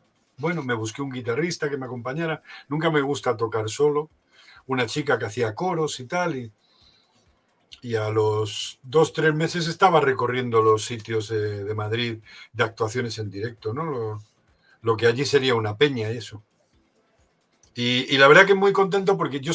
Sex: male